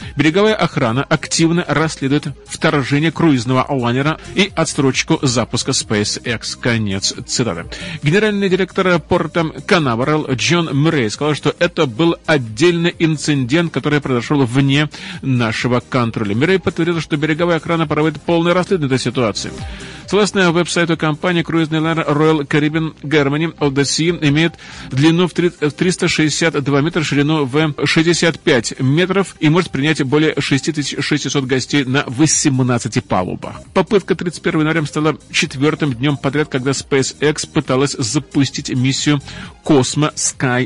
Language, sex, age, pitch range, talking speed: Russian, male, 40-59, 135-165 Hz, 120 wpm